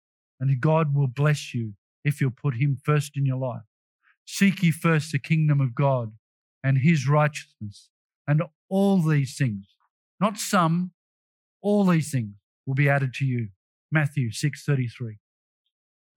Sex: male